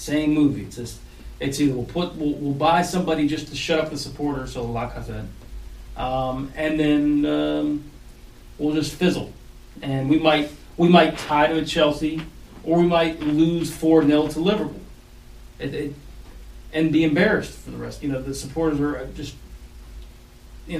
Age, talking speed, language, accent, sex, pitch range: 40-59, 175 wpm, English, American, male, 135-175 Hz